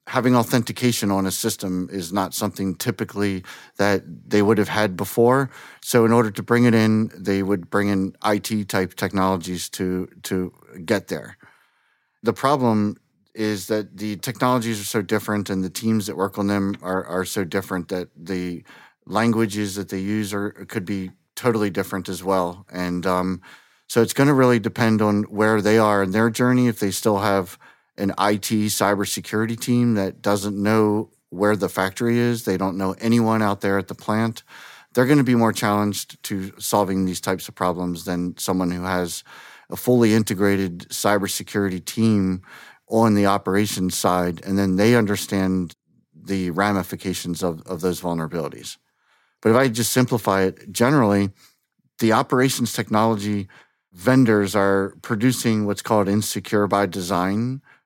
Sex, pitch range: male, 95-115 Hz